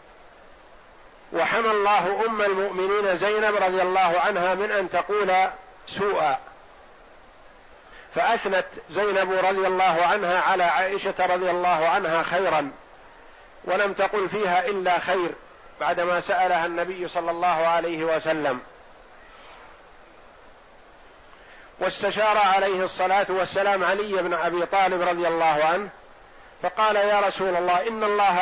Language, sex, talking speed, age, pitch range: Arabic, male, 110 wpm, 50-69, 180-205 Hz